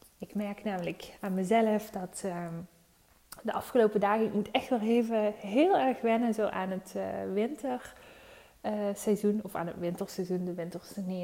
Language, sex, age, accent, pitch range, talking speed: Dutch, female, 20-39, Dutch, 180-230 Hz, 175 wpm